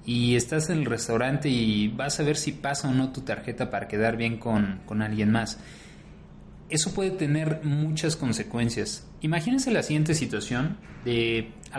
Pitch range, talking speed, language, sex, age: 120-155 Hz, 170 wpm, Spanish, male, 30-49